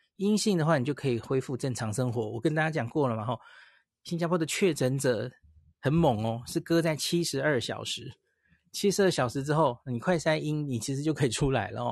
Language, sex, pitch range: Chinese, male, 115-155 Hz